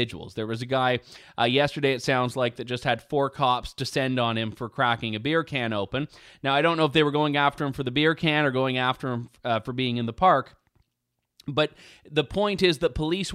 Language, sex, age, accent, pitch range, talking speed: English, male, 20-39, American, 125-175 Hz, 240 wpm